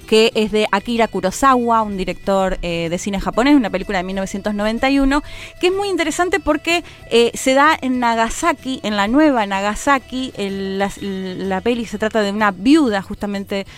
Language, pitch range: Spanish, 190-265 Hz